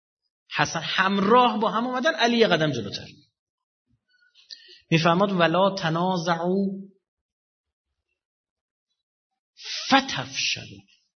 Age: 30-49